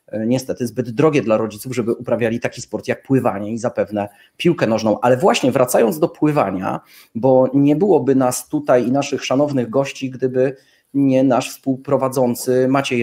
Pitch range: 125-150 Hz